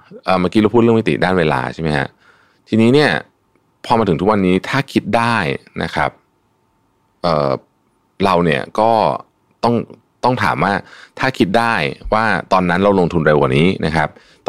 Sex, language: male, Thai